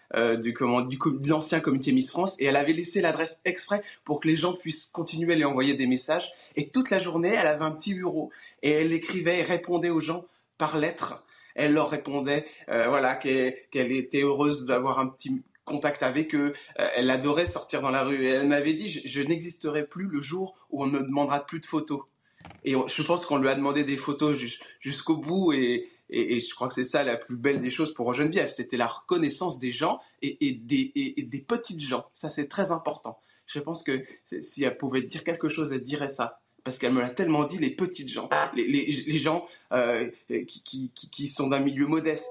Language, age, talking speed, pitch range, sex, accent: French, 20-39, 230 wpm, 135-170 Hz, male, French